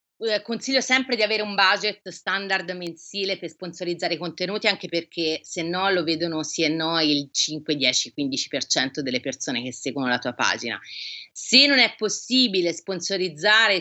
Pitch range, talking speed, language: 170-210 Hz, 160 wpm, Italian